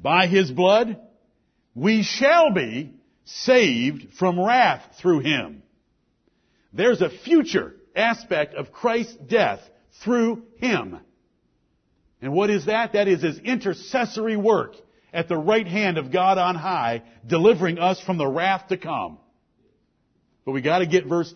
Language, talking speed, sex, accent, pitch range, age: English, 140 wpm, male, American, 165-230 Hz, 50-69